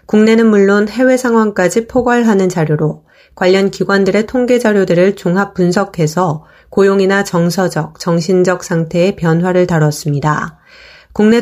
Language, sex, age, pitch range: Korean, female, 30-49, 170-215 Hz